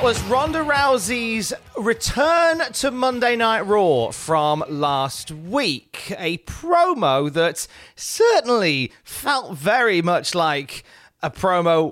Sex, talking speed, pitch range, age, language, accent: male, 105 wpm, 140-215 Hz, 30-49, English, British